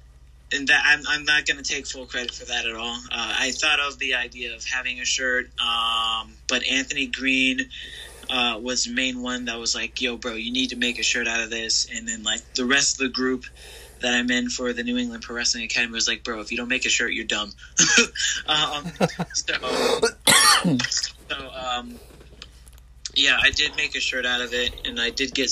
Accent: American